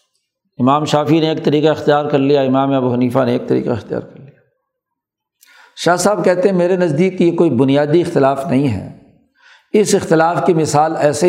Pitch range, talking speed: 135-170 Hz, 180 wpm